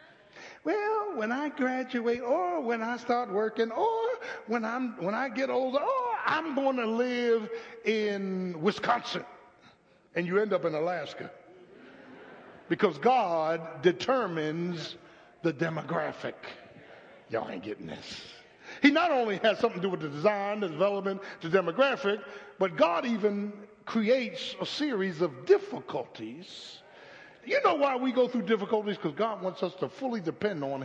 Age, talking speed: 60-79, 145 wpm